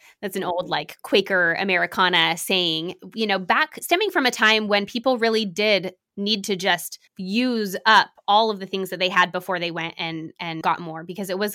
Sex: female